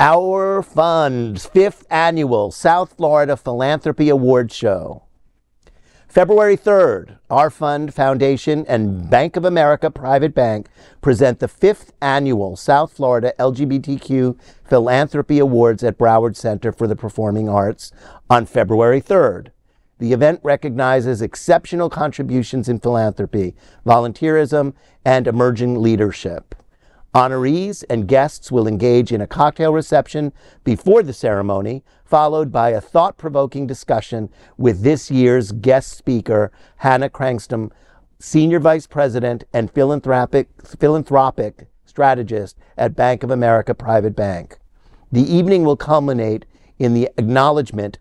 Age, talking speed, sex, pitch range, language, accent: 50-69, 115 wpm, male, 115-145 Hz, English, American